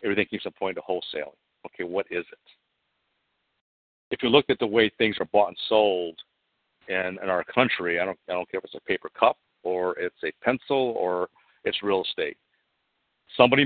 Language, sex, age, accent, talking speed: English, male, 50-69, American, 195 wpm